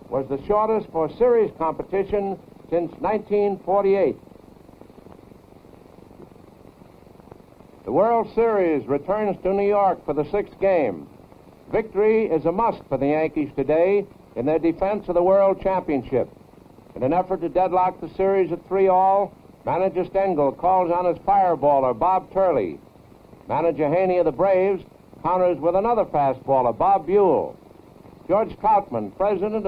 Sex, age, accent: male, 70-89, American